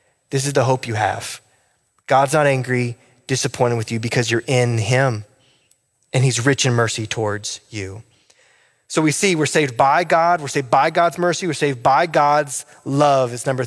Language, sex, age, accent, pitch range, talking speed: English, male, 20-39, American, 130-170 Hz, 185 wpm